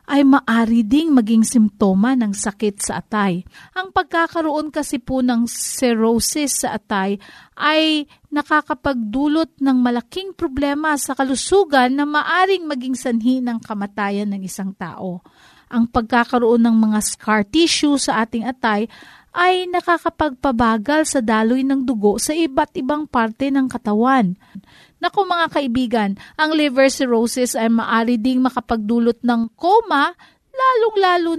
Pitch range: 230-305 Hz